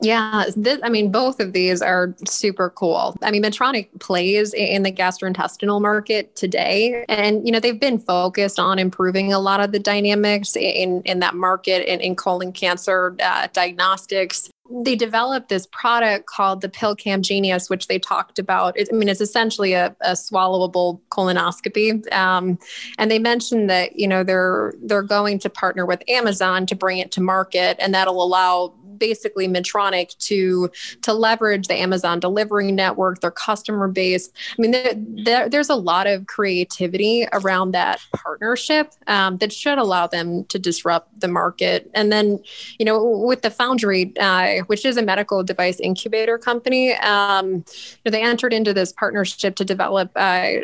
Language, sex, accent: English, female, American